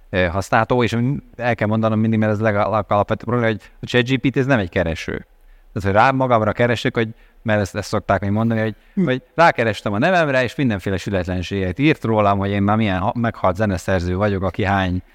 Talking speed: 190 wpm